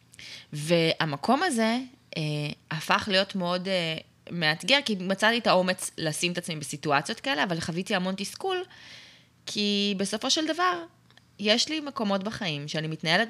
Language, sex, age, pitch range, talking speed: Hebrew, female, 20-39, 155-215 Hz, 140 wpm